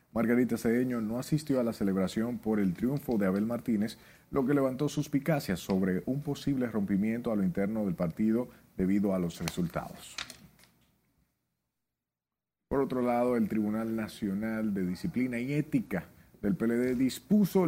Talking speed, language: 145 wpm, Spanish